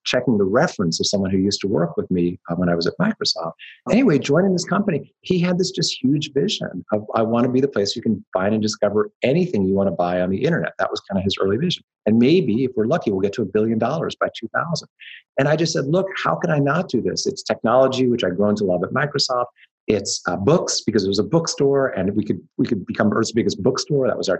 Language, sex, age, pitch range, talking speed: English, male, 30-49, 105-140 Hz, 265 wpm